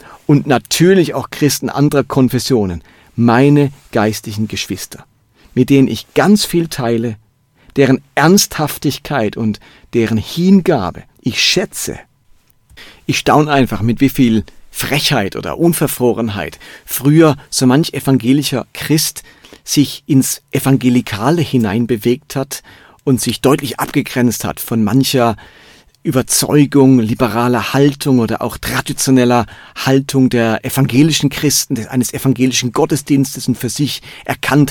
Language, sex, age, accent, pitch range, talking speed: German, male, 40-59, German, 125-150 Hz, 115 wpm